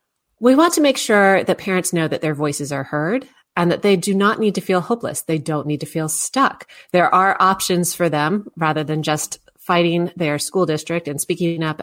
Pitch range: 160-210 Hz